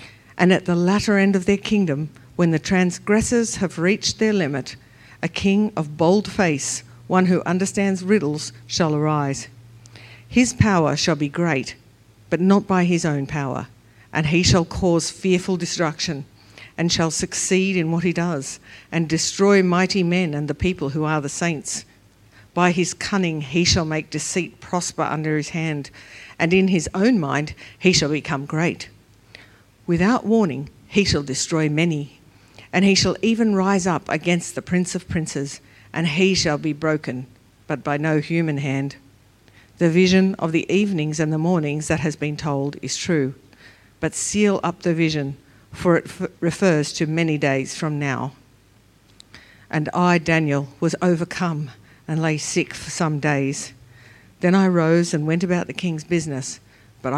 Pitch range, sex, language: 135-180 Hz, female, English